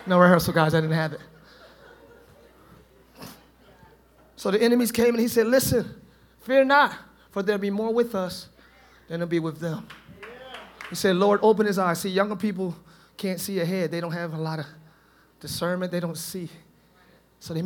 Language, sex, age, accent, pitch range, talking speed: English, male, 30-49, American, 160-200 Hz, 175 wpm